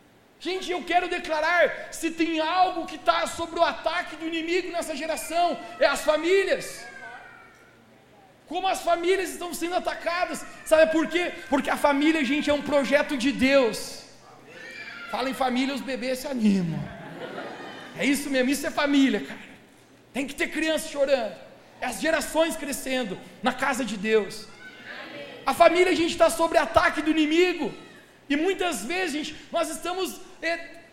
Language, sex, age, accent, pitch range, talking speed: Portuguese, male, 40-59, Brazilian, 270-330 Hz, 155 wpm